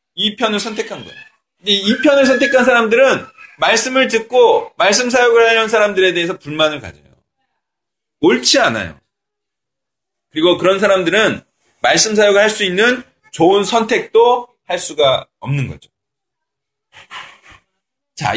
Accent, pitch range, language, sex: native, 155-240 Hz, Korean, male